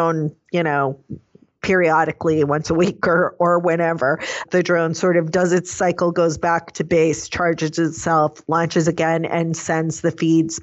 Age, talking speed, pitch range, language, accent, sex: 40-59, 160 wpm, 150-180 Hz, English, American, female